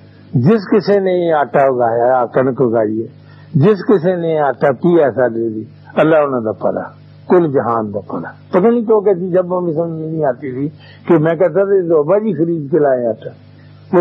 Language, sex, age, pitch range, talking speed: Urdu, male, 60-79, 125-155 Hz, 180 wpm